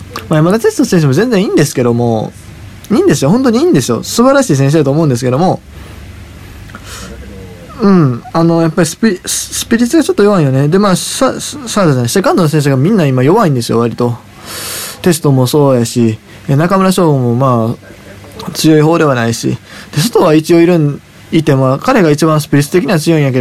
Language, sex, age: Japanese, male, 20-39